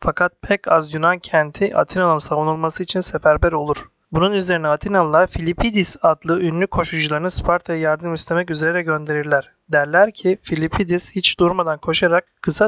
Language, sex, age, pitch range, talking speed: Turkish, male, 30-49, 155-180 Hz, 135 wpm